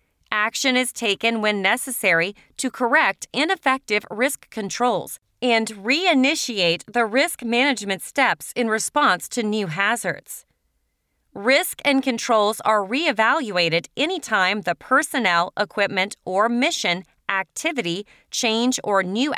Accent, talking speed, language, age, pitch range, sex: American, 110 wpm, English, 30-49, 195-255 Hz, female